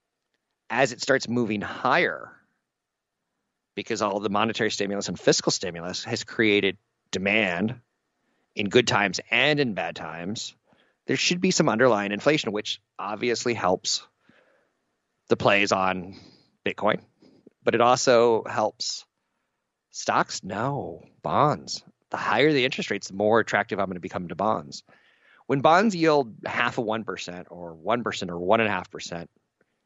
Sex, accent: male, American